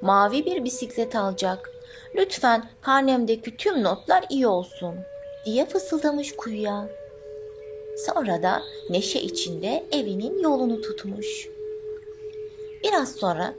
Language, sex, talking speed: Turkish, female, 95 wpm